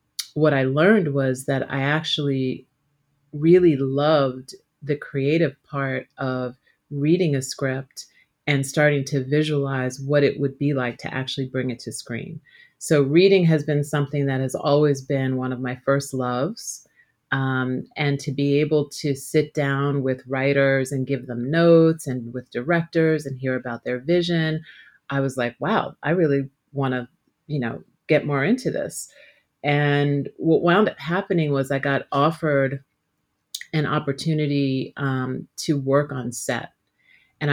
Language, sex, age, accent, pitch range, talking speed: English, female, 30-49, American, 130-150 Hz, 155 wpm